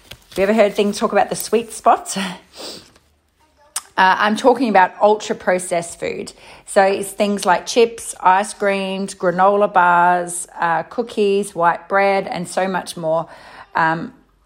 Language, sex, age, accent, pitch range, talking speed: English, female, 30-49, Australian, 175-215 Hz, 135 wpm